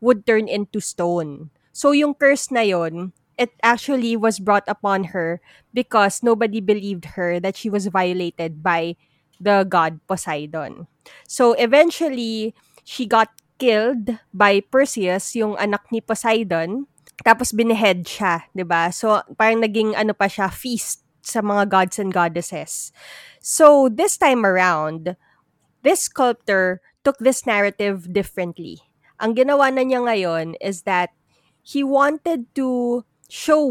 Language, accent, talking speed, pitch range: Filipino, native, 135 wpm, 180-240 Hz